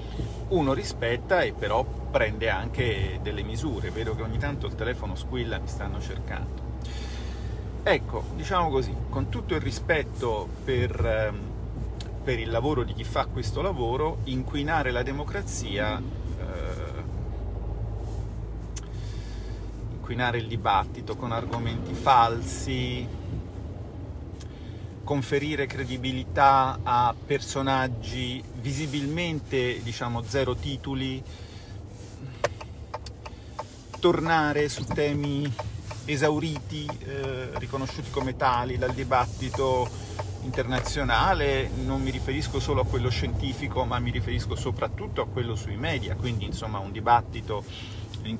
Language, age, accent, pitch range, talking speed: Italian, 40-59, native, 105-130 Hz, 105 wpm